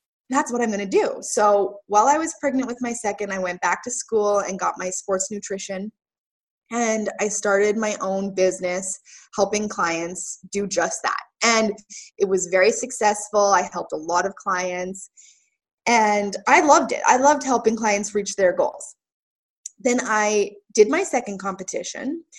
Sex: female